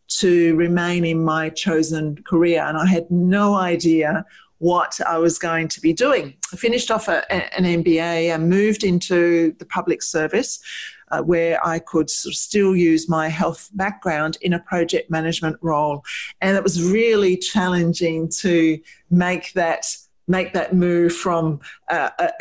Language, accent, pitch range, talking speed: English, Australian, 165-195 Hz, 160 wpm